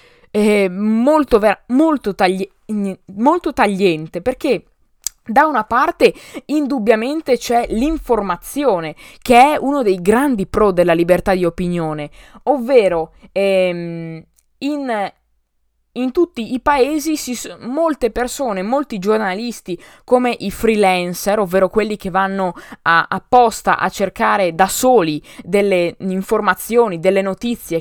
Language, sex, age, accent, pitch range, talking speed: Italian, female, 20-39, native, 190-270 Hz, 115 wpm